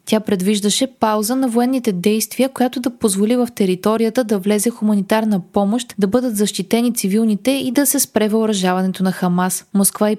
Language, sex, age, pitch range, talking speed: Bulgarian, female, 20-39, 195-240 Hz, 165 wpm